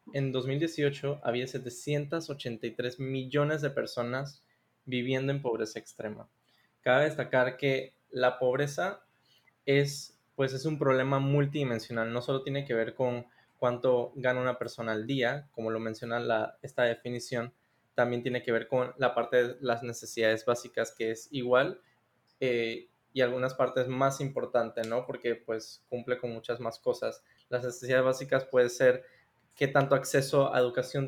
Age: 20-39